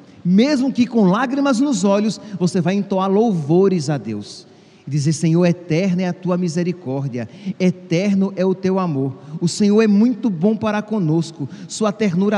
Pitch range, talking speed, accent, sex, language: 145-210 Hz, 165 wpm, Brazilian, male, Portuguese